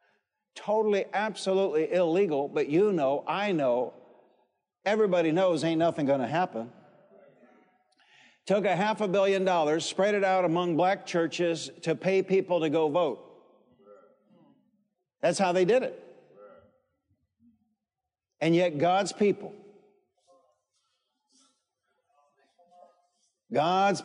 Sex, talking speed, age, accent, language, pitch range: male, 105 wpm, 60-79, American, English, 165-240 Hz